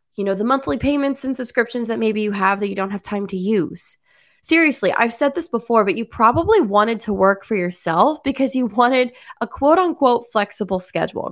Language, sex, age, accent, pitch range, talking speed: English, female, 20-39, American, 185-255 Hz, 205 wpm